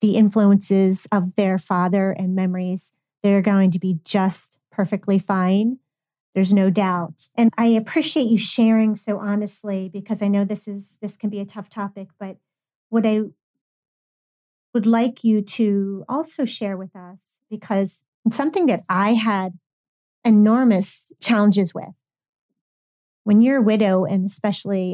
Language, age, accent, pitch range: English, 30-49, American, 185-225 Hz